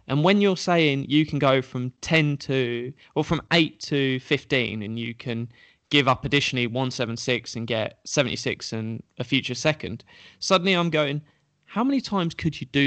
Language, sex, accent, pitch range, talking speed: English, male, British, 125-155 Hz, 175 wpm